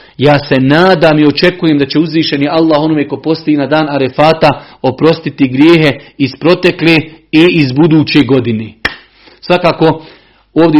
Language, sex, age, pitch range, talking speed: Croatian, male, 40-59, 140-175 Hz, 140 wpm